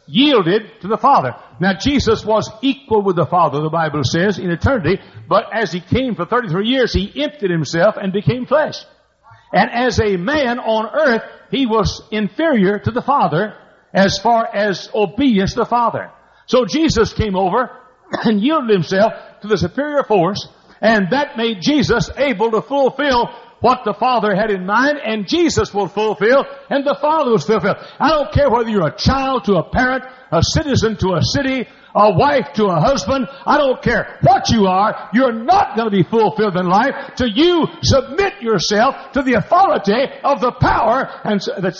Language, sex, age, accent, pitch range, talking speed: English, male, 60-79, American, 205-275 Hz, 180 wpm